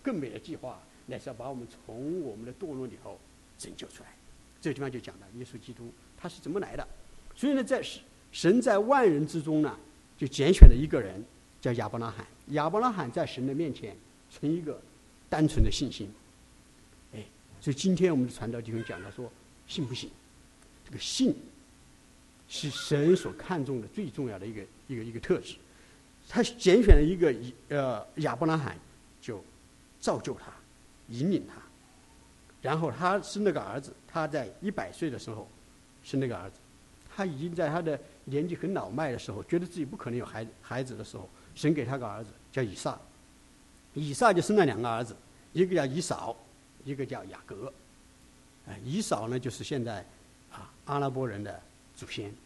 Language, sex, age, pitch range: English, male, 50-69, 115-160 Hz